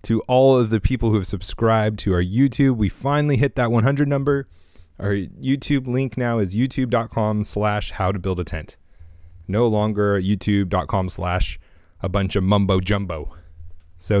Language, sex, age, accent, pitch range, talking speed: English, male, 30-49, American, 90-130 Hz, 150 wpm